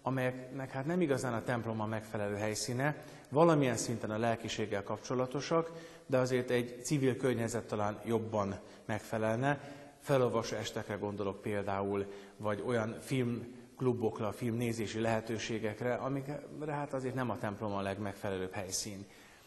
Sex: male